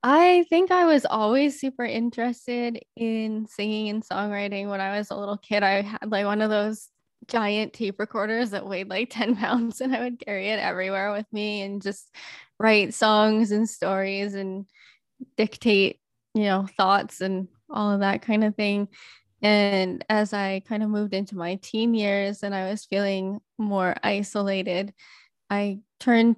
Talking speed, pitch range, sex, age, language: 170 wpm, 195-220 Hz, female, 10-29, English